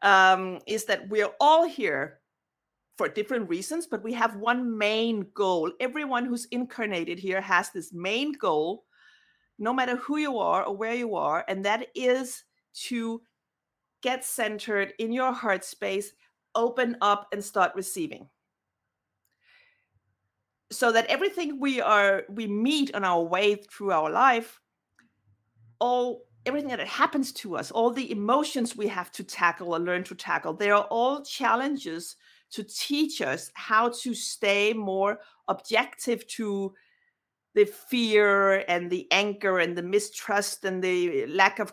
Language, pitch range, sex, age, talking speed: English, 195-255 Hz, female, 50-69, 145 wpm